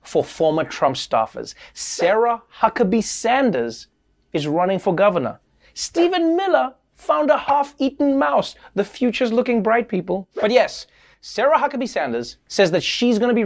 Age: 30-49